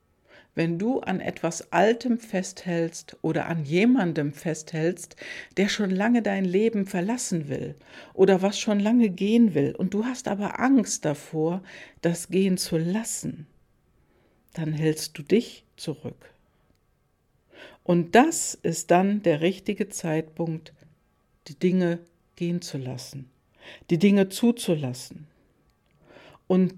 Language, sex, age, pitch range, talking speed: German, female, 60-79, 155-195 Hz, 120 wpm